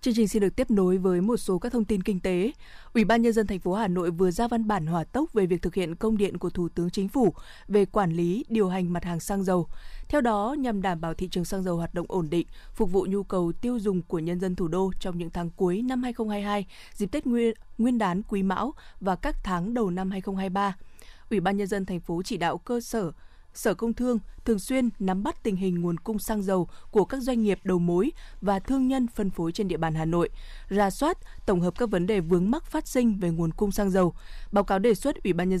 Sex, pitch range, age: female, 180-225 Hz, 20-39